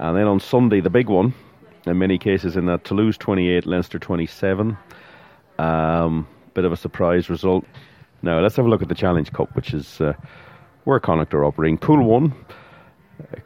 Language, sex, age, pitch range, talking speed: English, male, 40-59, 85-110 Hz, 185 wpm